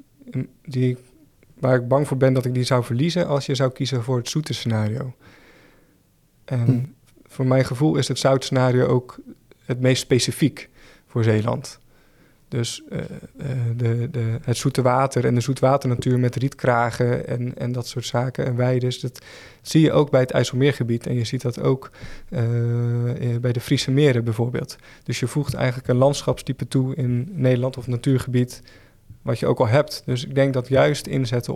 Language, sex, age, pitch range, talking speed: Dutch, male, 20-39, 120-135 Hz, 175 wpm